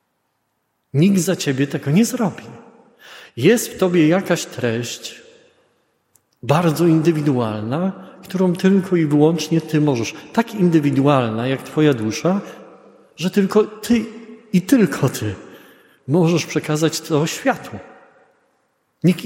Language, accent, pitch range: Polish, native, 130-165 Hz